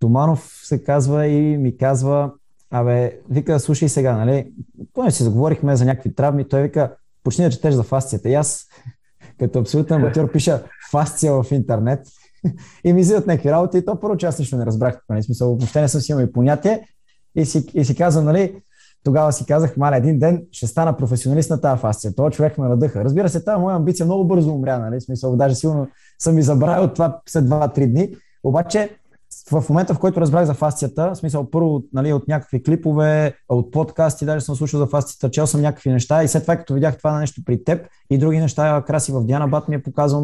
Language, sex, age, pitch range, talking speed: Bulgarian, male, 20-39, 130-160 Hz, 210 wpm